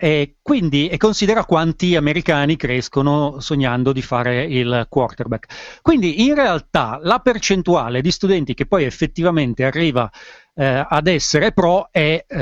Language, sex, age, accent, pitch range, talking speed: Italian, male, 40-59, native, 130-170 Hz, 140 wpm